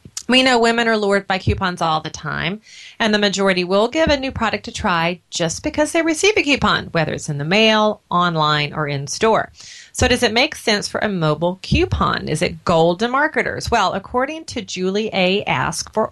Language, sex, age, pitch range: English, female, 30-49, 165-220 Hz